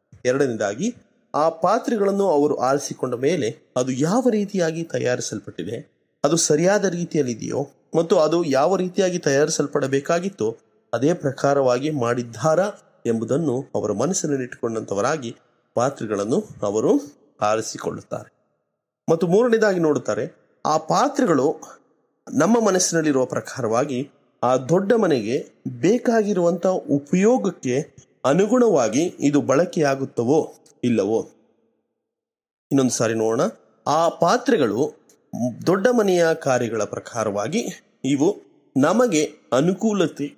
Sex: male